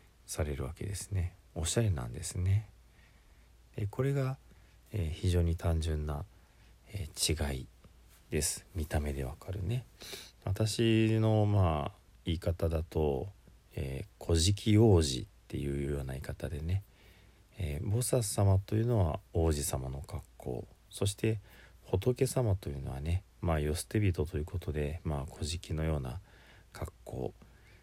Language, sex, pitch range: Japanese, male, 75-100 Hz